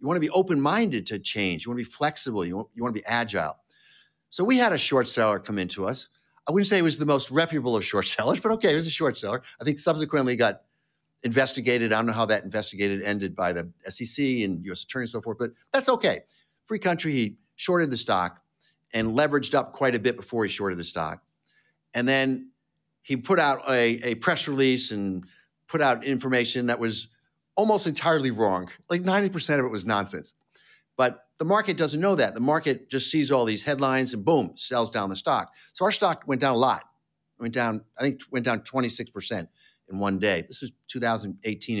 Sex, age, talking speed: male, 50-69, 210 wpm